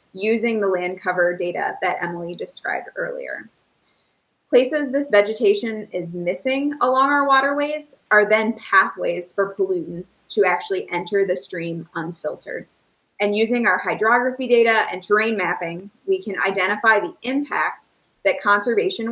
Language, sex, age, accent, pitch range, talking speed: English, female, 20-39, American, 185-255 Hz, 135 wpm